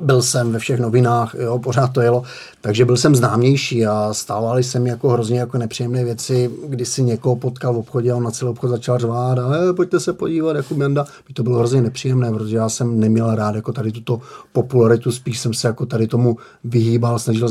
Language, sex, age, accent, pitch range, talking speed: Czech, male, 30-49, native, 115-125 Hz, 215 wpm